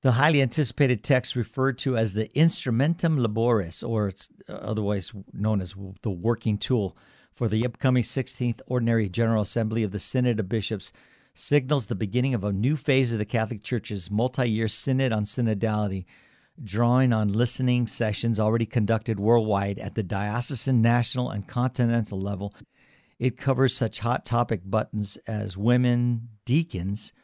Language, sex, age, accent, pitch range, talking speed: English, male, 50-69, American, 110-130 Hz, 150 wpm